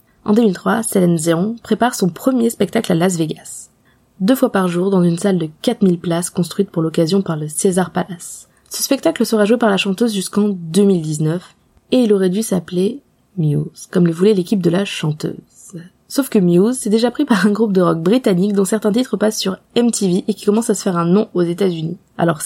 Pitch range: 180-225 Hz